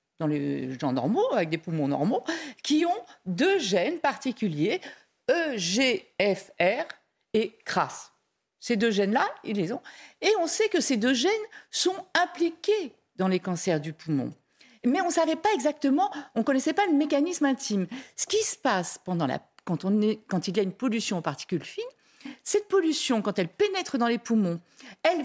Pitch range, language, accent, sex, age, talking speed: 205-335 Hz, French, French, female, 50-69, 175 wpm